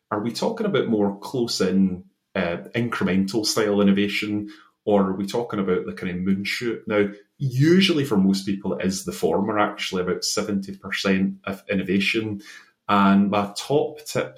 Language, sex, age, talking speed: English, male, 30-49, 145 wpm